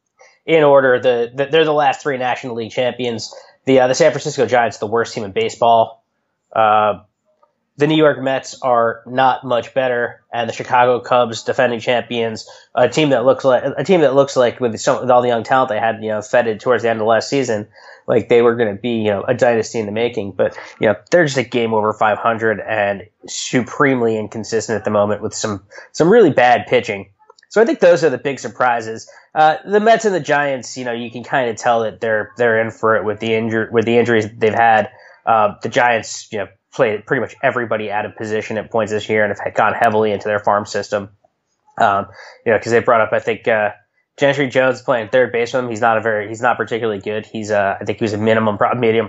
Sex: male